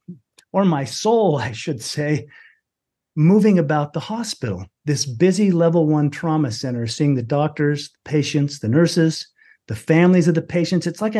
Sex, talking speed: male, 160 wpm